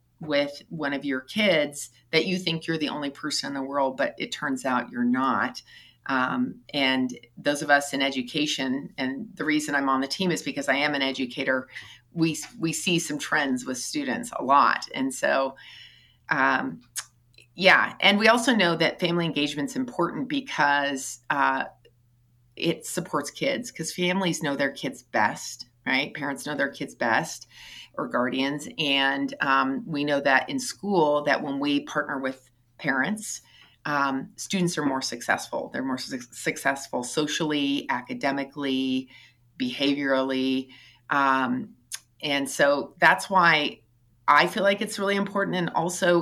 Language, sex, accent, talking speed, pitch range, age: English, female, American, 155 wpm, 130-170 Hz, 30-49